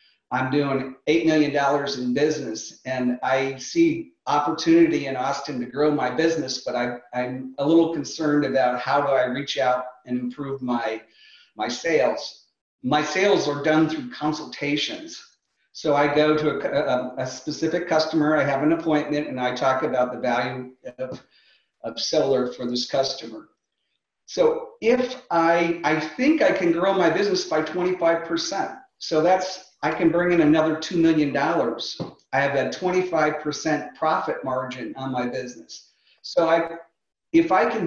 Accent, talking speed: American, 155 wpm